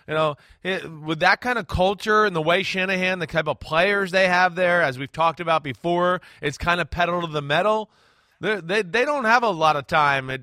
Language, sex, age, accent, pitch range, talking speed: English, male, 30-49, American, 150-190 Hz, 235 wpm